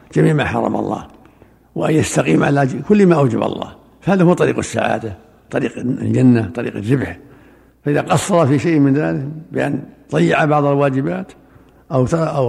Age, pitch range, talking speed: 60-79, 125-155 Hz, 150 wpm